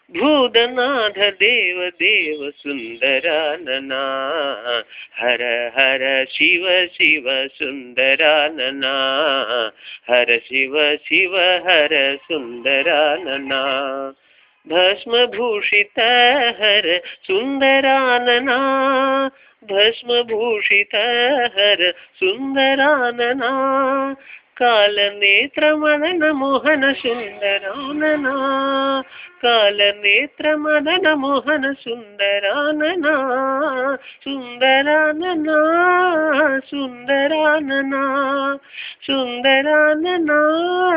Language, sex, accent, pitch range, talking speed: English, male, Indian, 180-280 Hz, 35 wpm